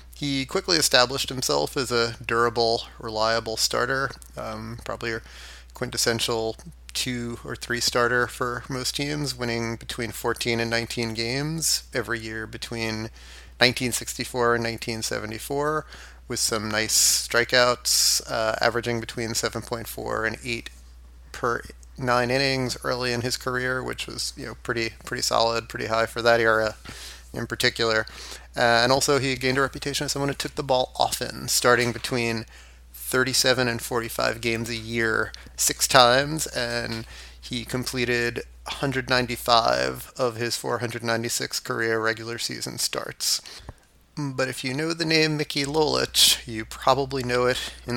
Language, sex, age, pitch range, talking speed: English, male, 30-49, 110-125 Hz, 140 wpm